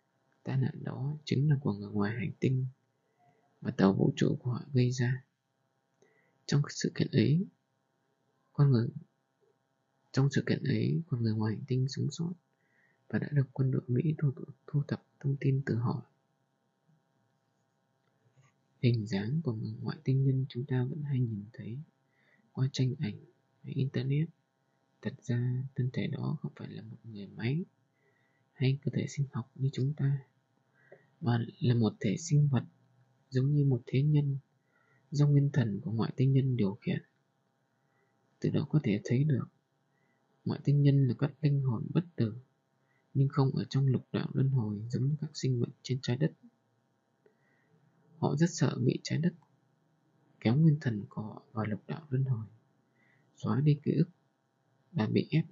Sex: male